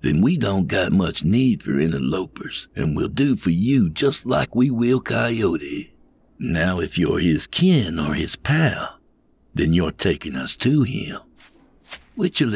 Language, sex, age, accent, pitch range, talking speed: English, male, 60-79, American, 100-140 Hz, 160 wpm